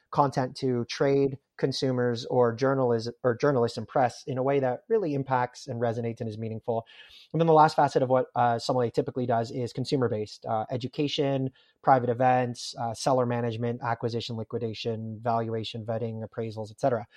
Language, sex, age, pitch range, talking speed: English, male, 30-49, 115-135 Hz, 165 wpm